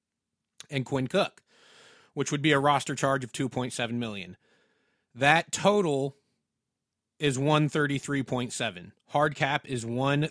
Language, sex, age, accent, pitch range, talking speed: English, male, 30-49, American, 135-165 Hz, 150 wpm